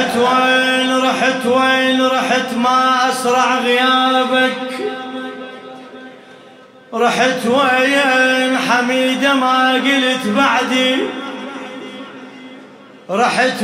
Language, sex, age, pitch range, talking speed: Arabic, male, 30-49, 245-270 Hz, 65 wpm